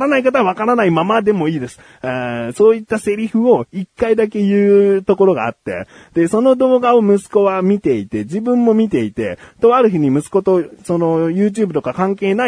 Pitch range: 125-210 Hz